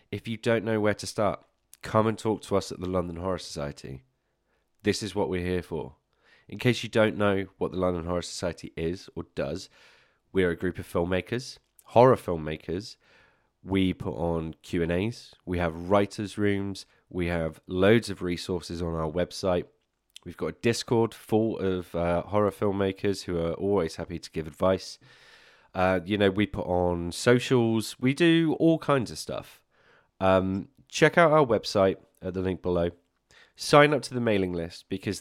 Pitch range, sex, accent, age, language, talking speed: 90-105 Hz, male, British, 20-39, English, 180 wpm